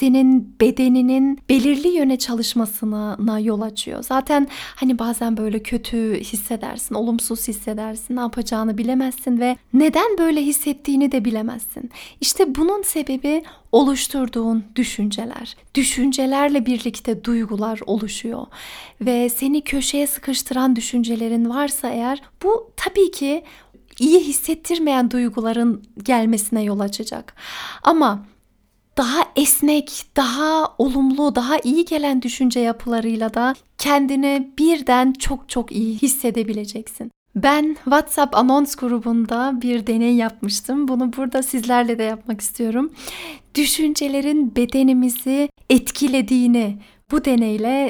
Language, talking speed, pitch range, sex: Turkish, 105 wpm, 230-280 Hz, female